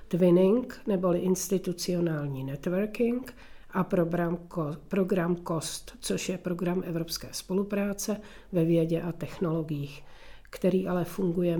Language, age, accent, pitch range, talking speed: Czech, 50-69, native, 170-205 Hz, 100 wpm